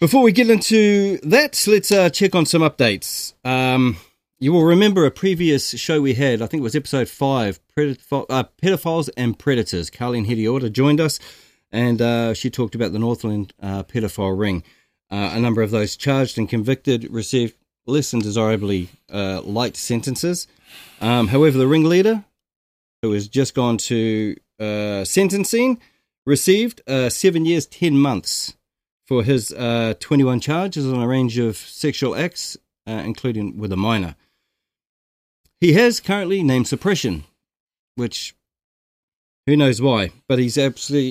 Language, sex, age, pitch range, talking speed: English, male, 30-49, 110-150 Hz, 150 wpm